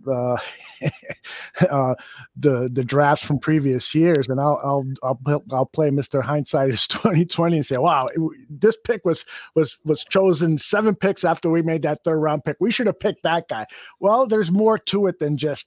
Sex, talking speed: male, 190 wpm